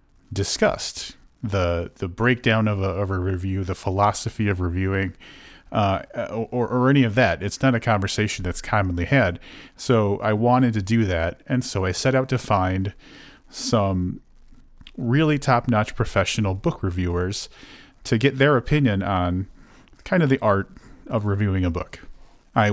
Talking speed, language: 155 wpm, English